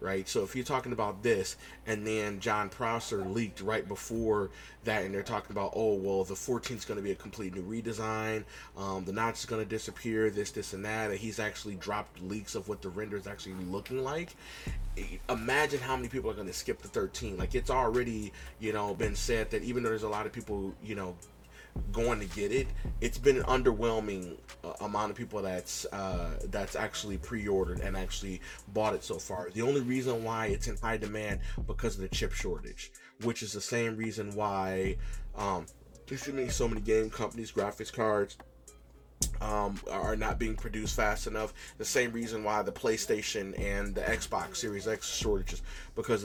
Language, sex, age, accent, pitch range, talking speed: English, male, 30-49, American, 100-115 Hz, 195 wpm